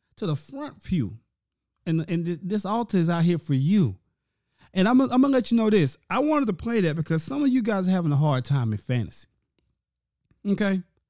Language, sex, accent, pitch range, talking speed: English, male, American, 140-205 Hz, 215 wpm